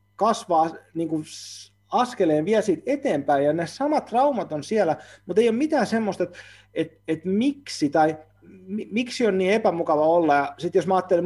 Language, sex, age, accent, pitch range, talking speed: Finnish, male, 30-49, native, 125-180 Hz, 175 wpm